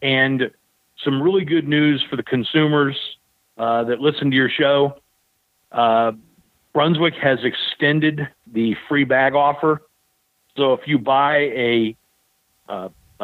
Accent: American